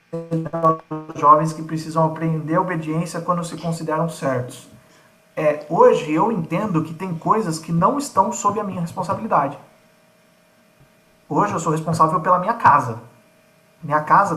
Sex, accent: male, Brazilian